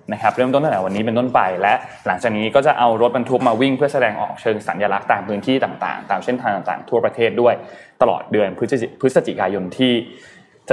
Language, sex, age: Thai, male, 20-39